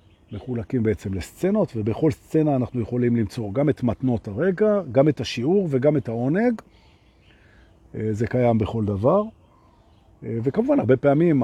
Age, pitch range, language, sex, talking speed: 50-69, 105-155 Hz, Hebrew, male, 130 wpm